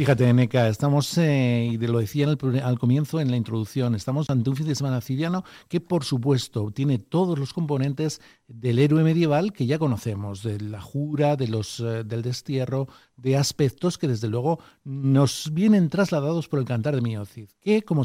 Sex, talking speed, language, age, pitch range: male, 195 wpm, Spanish, 60-79, 120-150 Hz